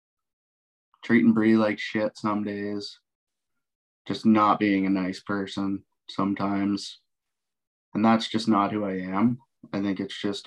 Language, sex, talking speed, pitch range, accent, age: English, male, 140 wpm, 100-110 Hz, American, 20-39